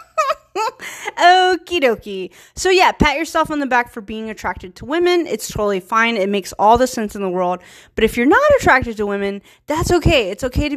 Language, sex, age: English, female, 30-49